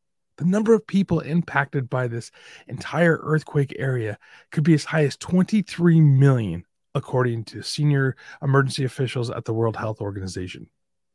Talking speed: 145 wpm